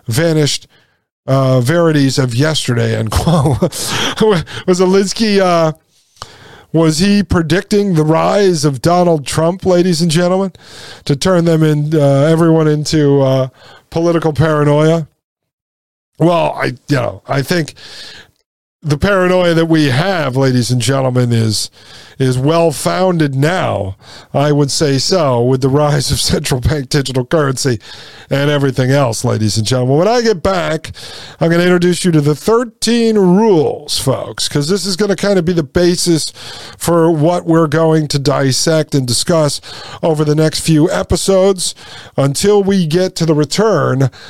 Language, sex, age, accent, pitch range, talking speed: English, male, 40-59, American, 135-175 Hz, 150 wpm